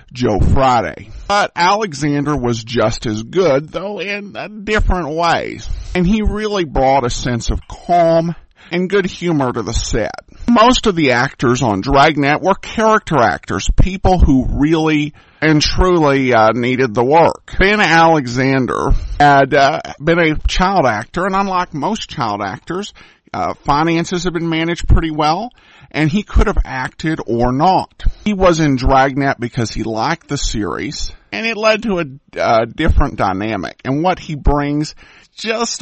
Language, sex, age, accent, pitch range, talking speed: English, male, 50-69, American, 125-175 Hz, 155 wpm